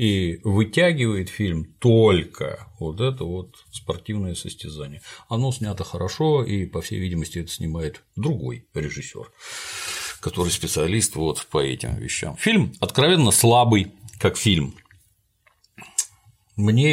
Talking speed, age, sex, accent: 115 wpm, 50-69, male, native